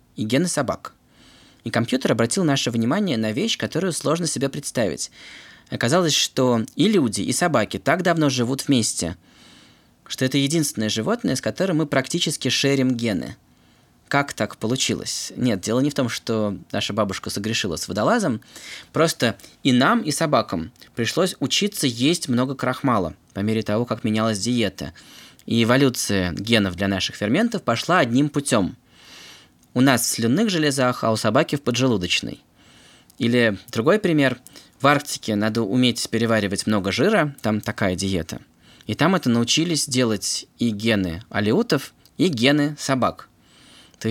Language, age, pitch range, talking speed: Russian, 20-39, 110-140 Hz, 145 wpm